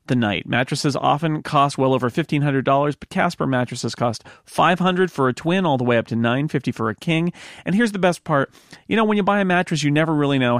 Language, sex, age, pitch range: English, male, 40-59, 125-175 Hz